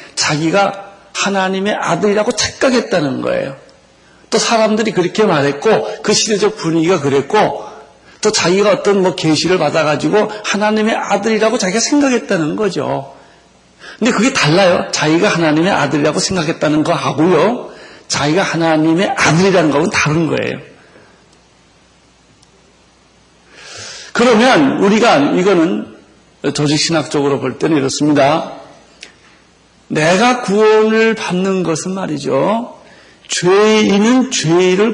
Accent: native